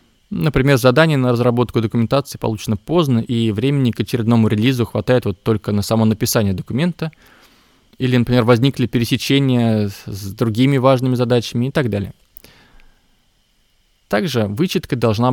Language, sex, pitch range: Russian, male, 105-135 Hz